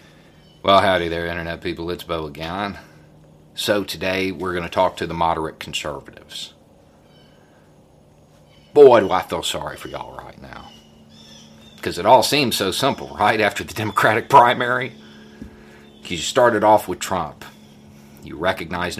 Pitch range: 65-105 Hz